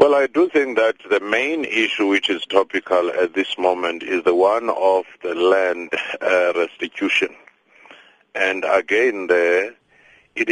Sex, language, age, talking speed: male, English, 60-79, 150 wpm